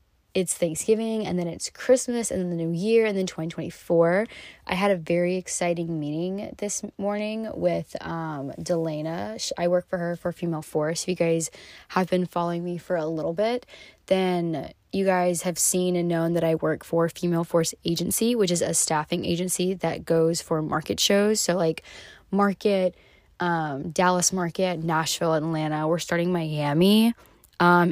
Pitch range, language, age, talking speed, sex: 165-185 Hz, English, 20-39, 170 wpm, female